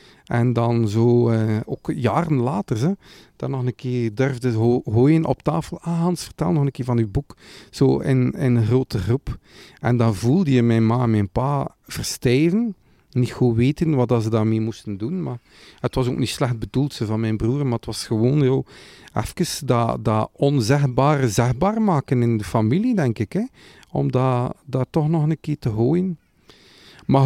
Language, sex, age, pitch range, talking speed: Dutch, male, 40-59, 115-155 Hz, 185 wpm